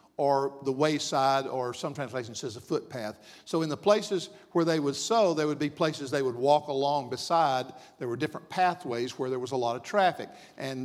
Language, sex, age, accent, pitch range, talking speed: English, male, 50-69, American, 140-185 Hz, 210 wpm